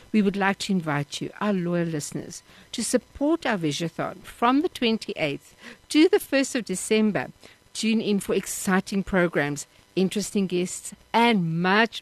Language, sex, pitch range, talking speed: English, female, 160-215 Hz, 150 wpm